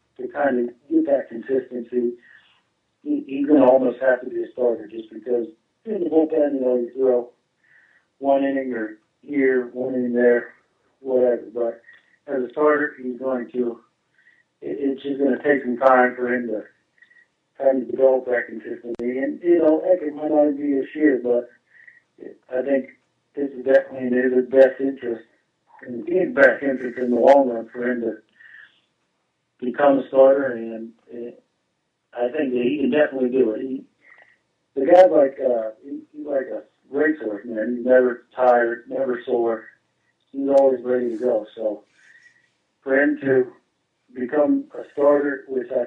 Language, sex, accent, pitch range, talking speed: English, male, American, 120-140 Hz, 165 wpm